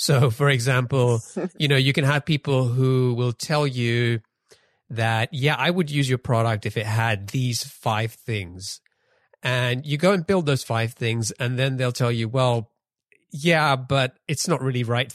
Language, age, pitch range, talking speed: English, 30-49, 110-145 Hz, 180 wpm